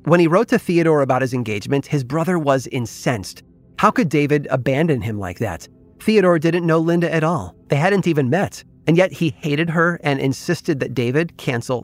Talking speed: 200 wpm